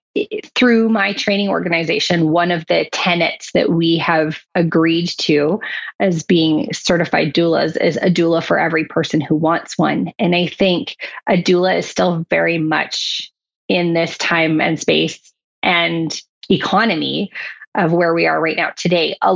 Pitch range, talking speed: 165-190 Hz, 155 wpm